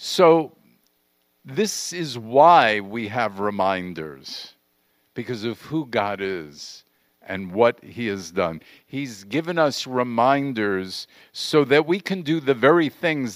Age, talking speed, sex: 50-69, 130 wpm, male